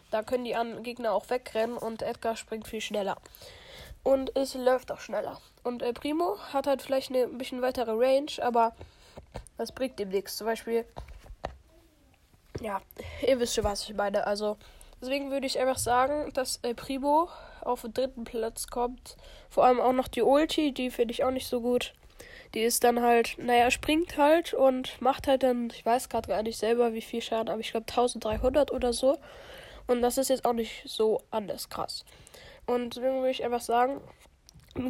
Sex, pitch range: female, 225-265 Hz